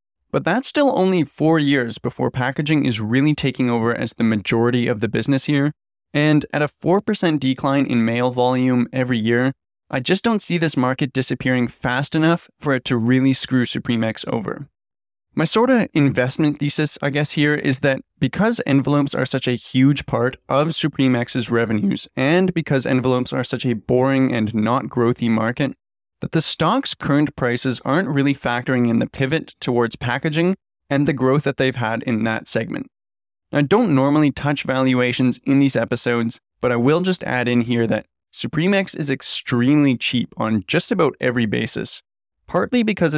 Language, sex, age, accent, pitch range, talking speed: English, male, 20-39, American, 120-150 Hz, 175 wpm